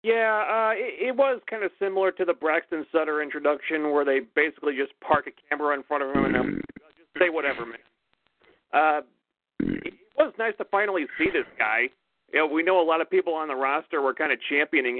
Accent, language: American, English